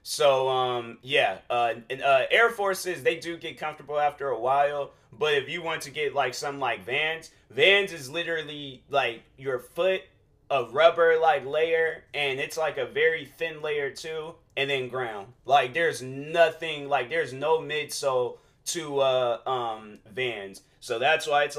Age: 30-49